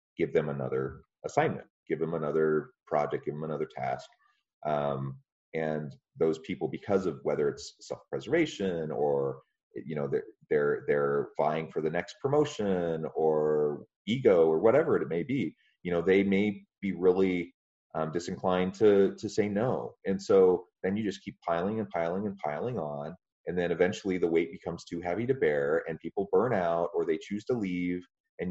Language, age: English, 30-49